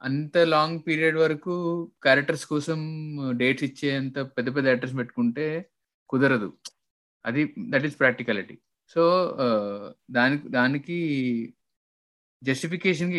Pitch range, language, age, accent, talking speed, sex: 130-170 Hz, Telugu, 20-39, native, 100 wpm, male